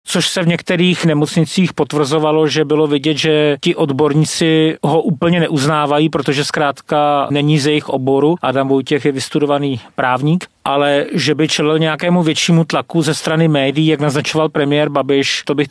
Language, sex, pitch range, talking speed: Czech, male, 135-155 Hz, 160 wpm